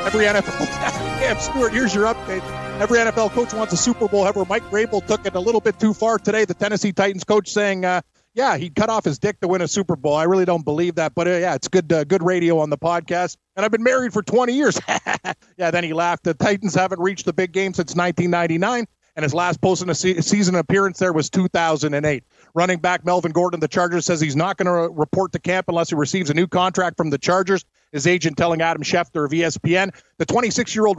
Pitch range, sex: 160-195 Hz, male